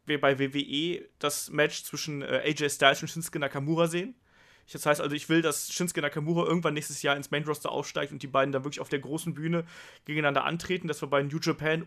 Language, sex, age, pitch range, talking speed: German, male, 30-49, 145-170 Hz, 215 wpm